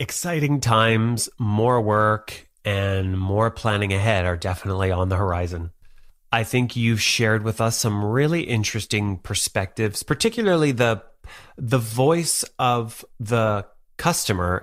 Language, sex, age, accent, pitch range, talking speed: English, male, 30-49, American, 100-115 Hz, 125 wpm